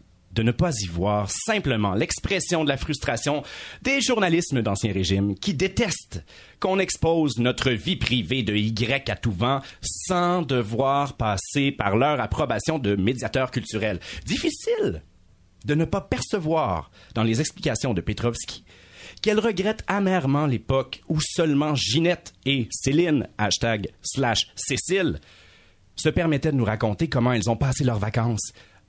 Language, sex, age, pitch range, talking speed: French, male, 40-59, 105-160 Hz, 140 wpm